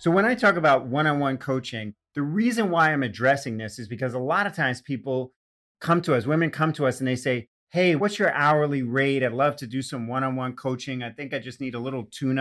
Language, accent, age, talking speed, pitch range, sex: English, American, 40-59, 260 wpm, 120-150 Hz, male